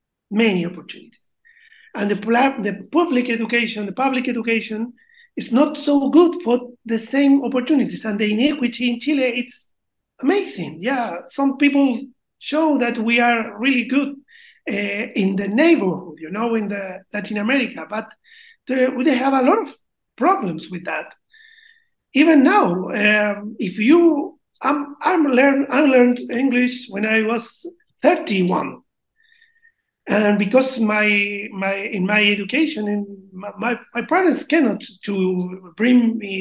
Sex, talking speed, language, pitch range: male, 140 wpm, German, 210-285 Hz